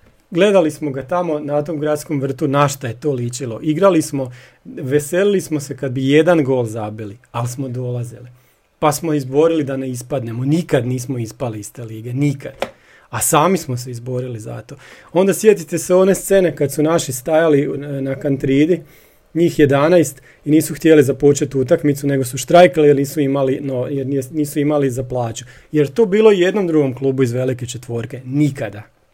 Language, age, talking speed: Croatian, 40-59, 170 wpm